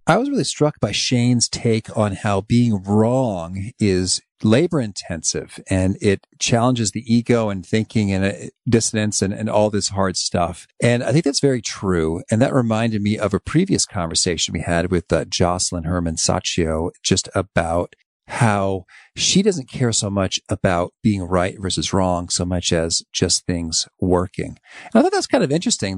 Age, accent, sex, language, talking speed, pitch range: 40-59, American, male, English, 175 wpm, 95-125 Hz